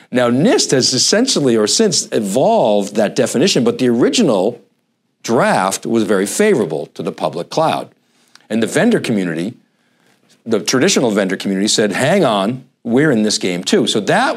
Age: 50-69